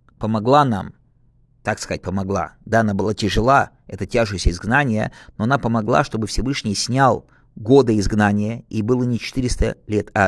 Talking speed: 150 wpm